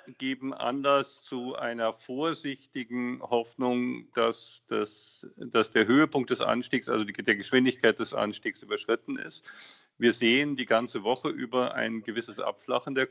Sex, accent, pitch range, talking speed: male, German, 115-135 Hz, 140 wpm